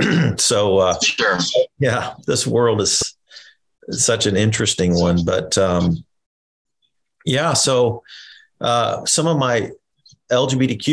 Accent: American